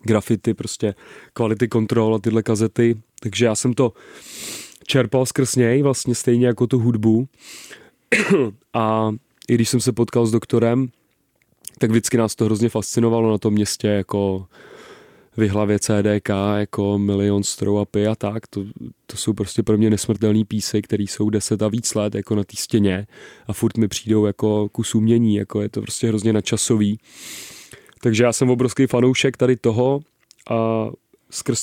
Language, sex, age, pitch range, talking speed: Czech, male, 30-49, 105-115 Hz, 160 wpm